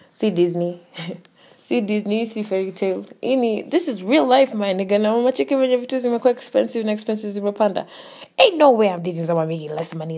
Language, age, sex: English, 20-39, female